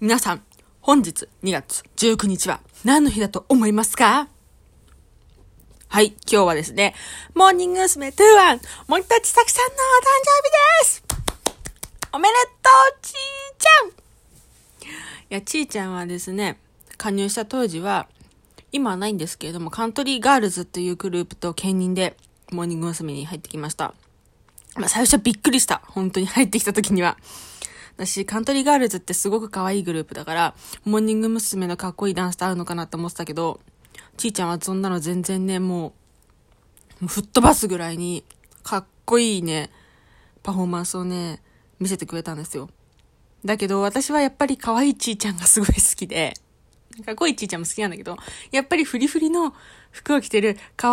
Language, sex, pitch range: Japanese, female, 180-270 Hz